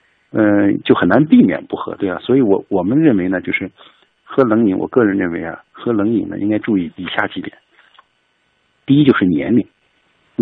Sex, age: male, 50-69